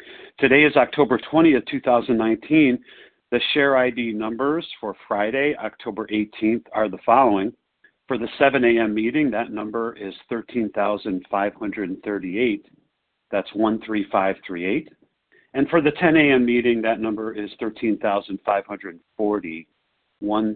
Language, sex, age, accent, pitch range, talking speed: English, male, 50-69, American, 105-135 Hz, 110 wpm